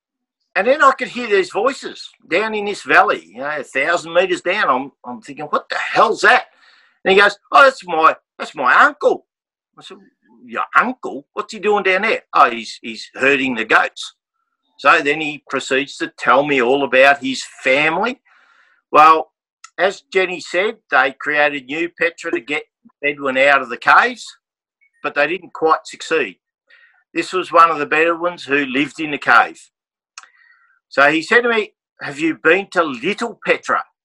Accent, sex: Australian, male